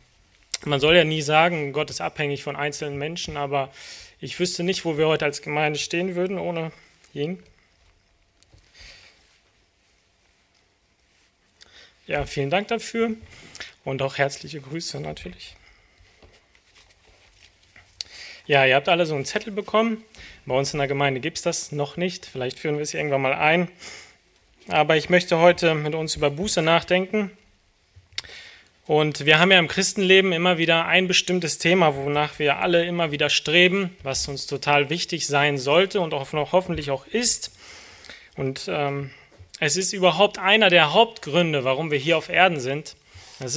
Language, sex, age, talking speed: German, male, 30-49, 150 wpm